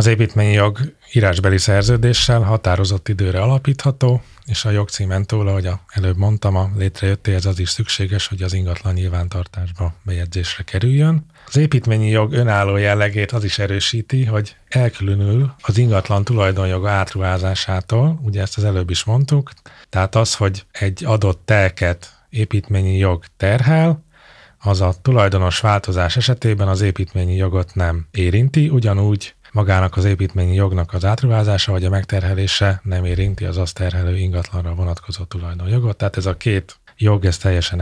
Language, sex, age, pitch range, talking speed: Hungarian, male, 30-49, 95-110 Hz, 145 wpm